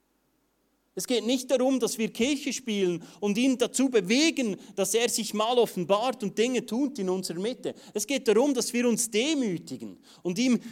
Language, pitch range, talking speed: German, 190-260 Hz, 180 wpm